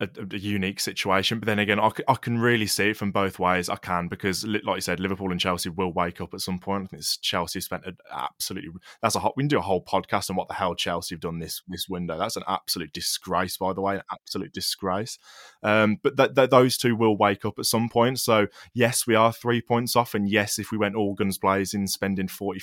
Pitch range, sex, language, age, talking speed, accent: 95-115 Hz, male, English, 20-39, 245 wpm, British